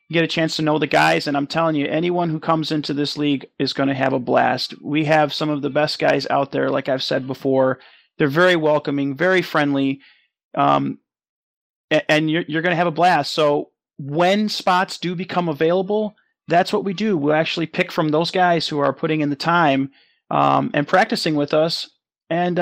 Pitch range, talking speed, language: 145-175 Hz, 205 wpm, English